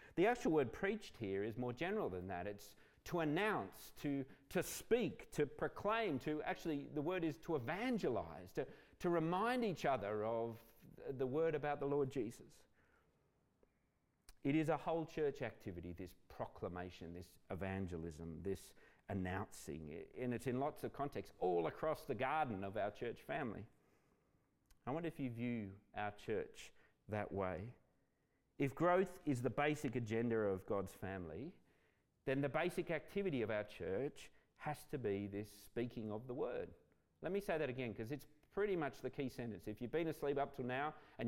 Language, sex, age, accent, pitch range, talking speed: English, male, 40-59, Australian, 105-155 Hz, 170 wpm